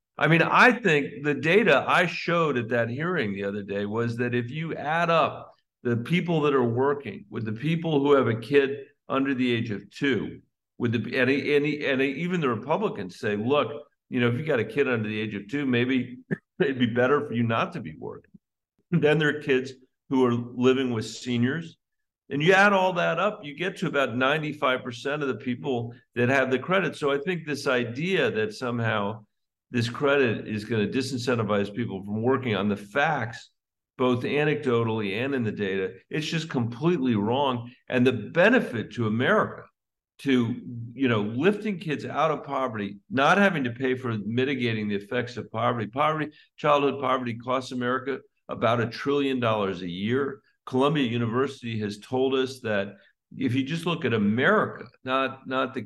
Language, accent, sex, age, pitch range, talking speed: English, American, male, 50-69, 120-145 Hz, 185 wpm